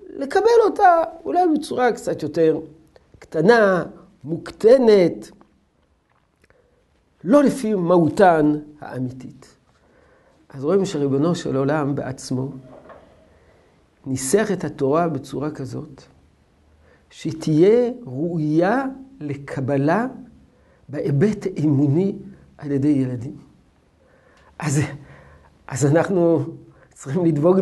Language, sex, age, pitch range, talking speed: Hebrew, male, 60-79, 140-205 Hz, 80 wpm